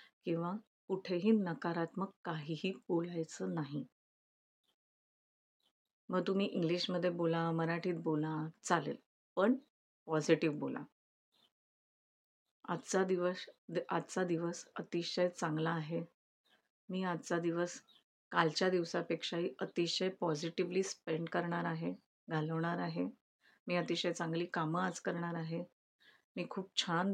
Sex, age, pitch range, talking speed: female, 30-49, 165-185 Hz, 100 wpm